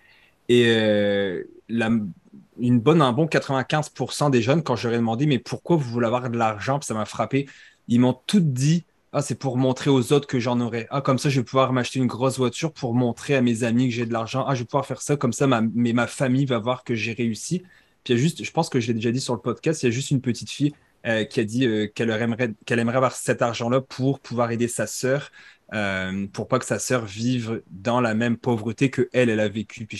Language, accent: French, French